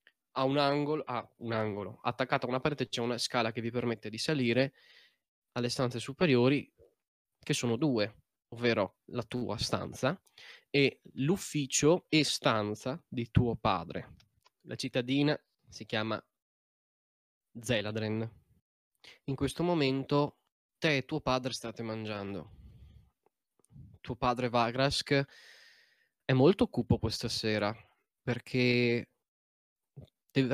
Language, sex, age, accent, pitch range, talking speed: Italian, male, 20-39, native, 110-130 Hz, 120 wpm